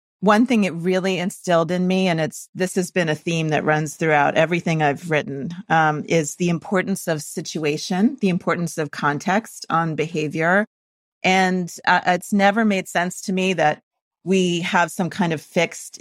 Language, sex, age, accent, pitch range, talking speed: English, female, 40-59, American, 155-185 Hz, 175 wpm